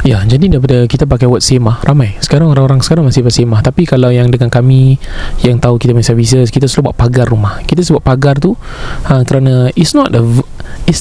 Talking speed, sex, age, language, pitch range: 220 wpm, male, 20-39, Malay, 125-160 Hz